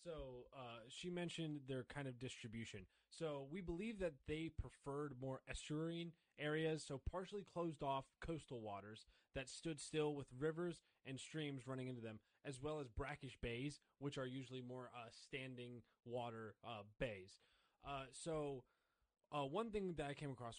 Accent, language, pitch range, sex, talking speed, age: American, English, 115-150 Hz, male, 165 wpm, 20-39